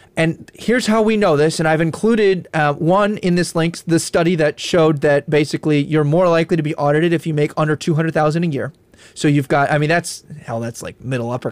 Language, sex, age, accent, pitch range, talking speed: English, male, 30-49, American, 145-185 Hz, 230 wpm